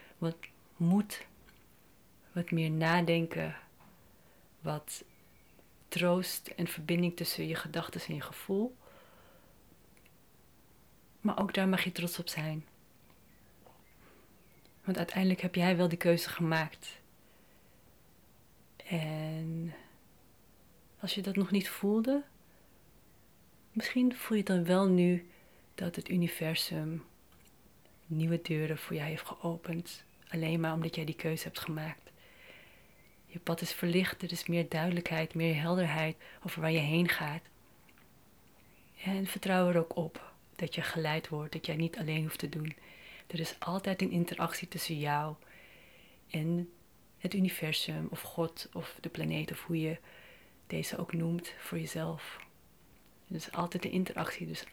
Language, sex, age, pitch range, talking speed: Dutch, female, 30-49, 160-180 Hz, 135 wpm